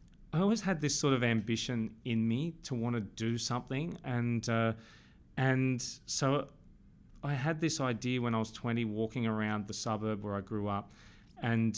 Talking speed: 180 wpm